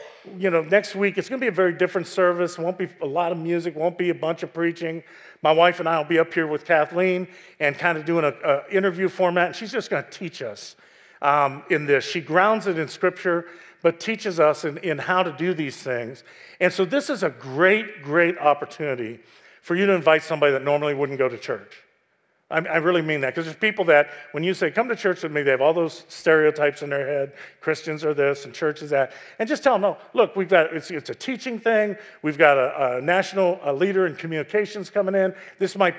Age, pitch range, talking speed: 50-69, 155-195 Hz, 235 wpm